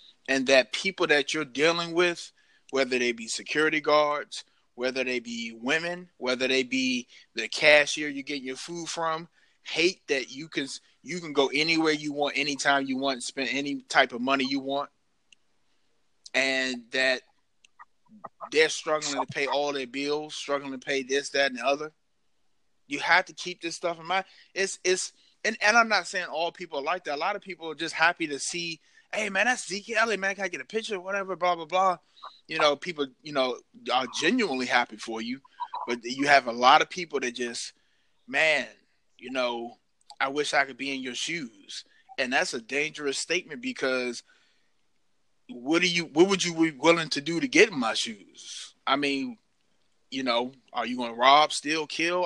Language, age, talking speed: English, 20-39, 195 wpm